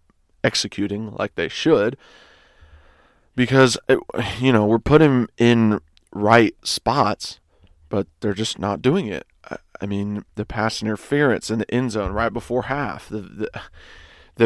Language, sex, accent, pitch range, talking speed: English, male, American, 90-125 Hz, 140 wpm